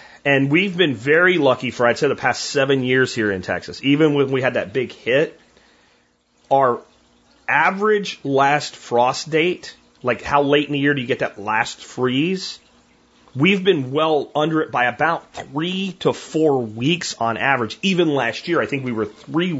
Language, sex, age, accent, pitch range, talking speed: English, male, 30-49, American, 115-155 Hz, 185 wpm